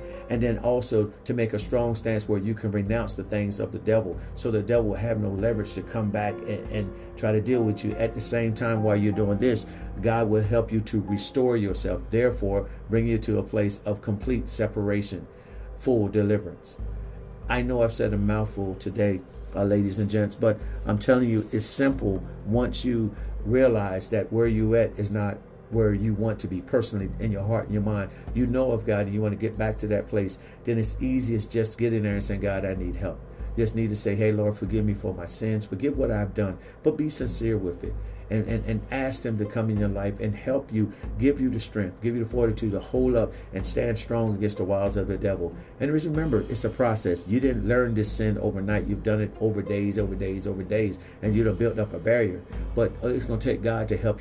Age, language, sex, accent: 50-69, English, male, American